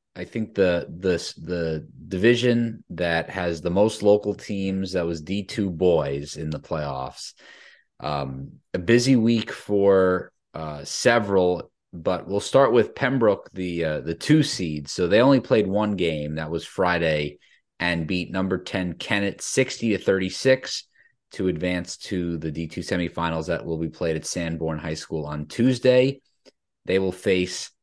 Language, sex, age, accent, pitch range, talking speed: English, male, 30-49, American, 80-100 Hz, 155 wpm